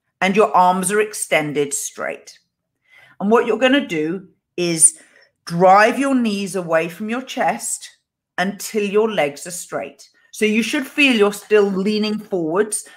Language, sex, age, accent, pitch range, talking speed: English, female, 40-59, British, 155-215 Hz, 155 wpm